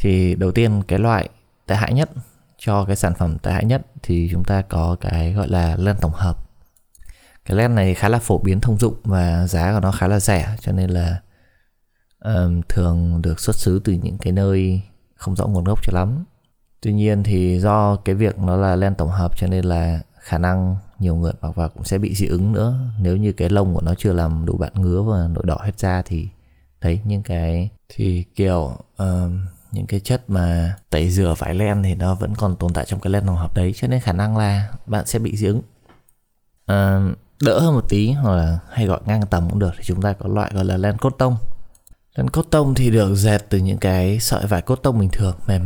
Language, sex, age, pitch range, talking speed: Vietnamese, male, 20-39, 90-110 Hz, 235 wpm